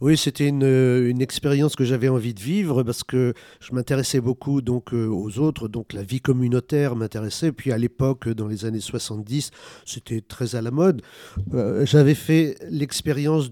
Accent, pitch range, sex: French, 115-135 Hz, male